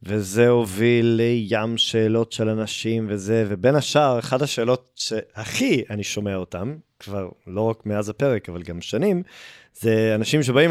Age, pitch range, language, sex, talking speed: 30-49, 105-140 Hz, Hebrew, male, 145 wpm